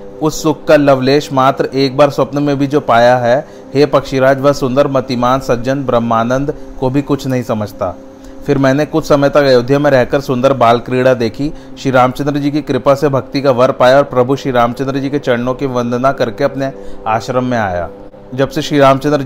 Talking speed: 205 wpm